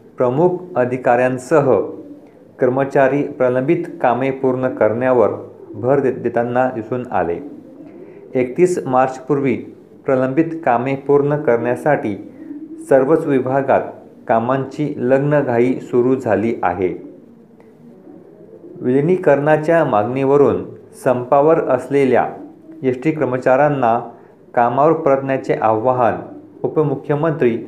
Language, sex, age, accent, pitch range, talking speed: Marathi, male, 40-59, native, 125-145 Hz, 75 wpm